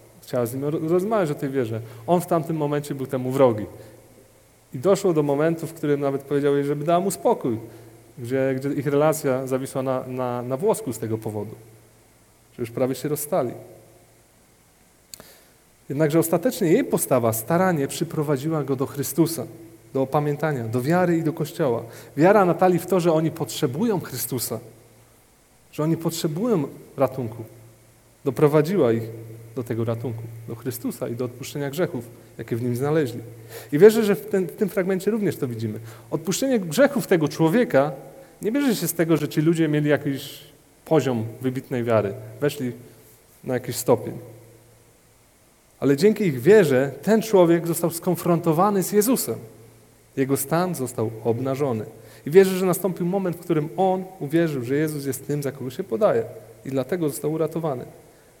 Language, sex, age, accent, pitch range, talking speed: Polish, male, 30-49, native, 120-170 Hz, 155 wpm